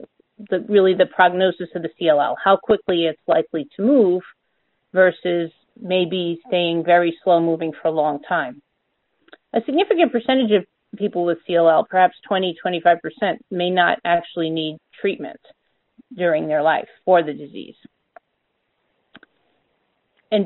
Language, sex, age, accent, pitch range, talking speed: English, female, 40-59, American, 170-215 Hz, 130 wpm